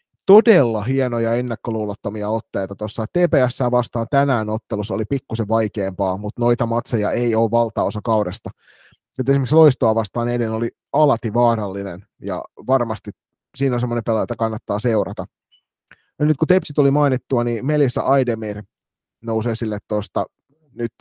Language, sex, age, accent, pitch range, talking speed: Finnish, male, 30-49, native, 105-125 Hz, 140 wpm